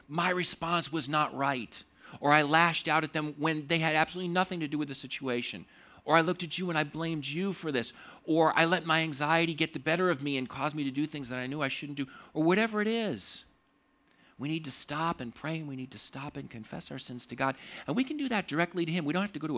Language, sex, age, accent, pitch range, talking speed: English, male, 50-69, American, 125-165 Hz, 275 wpm